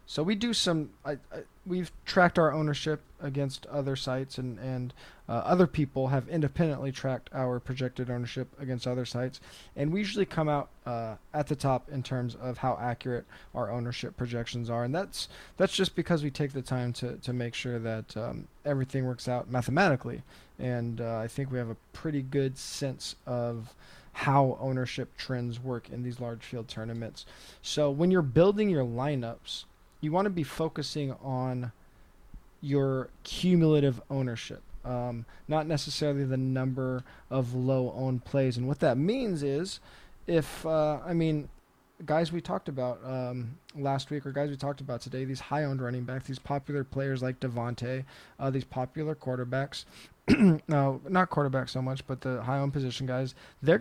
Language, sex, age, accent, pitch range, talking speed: English, male, 20-39, American, 125-150 Hz, 170 wpm